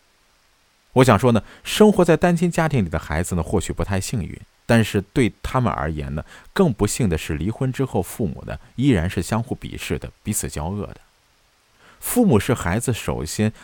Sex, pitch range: male, 80-120 Hz